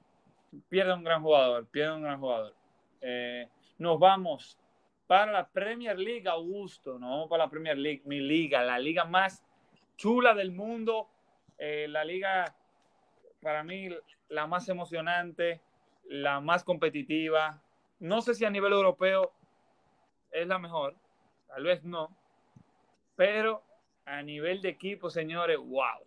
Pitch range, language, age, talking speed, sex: 160-200 Hz, Spanish, 20-39, 140 wpm, male